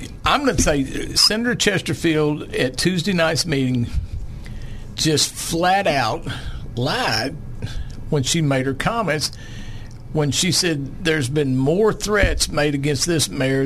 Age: 50-69